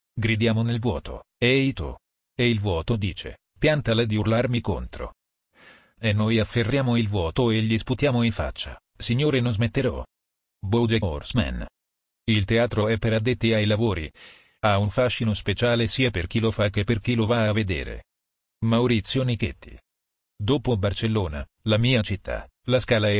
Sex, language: male, Italian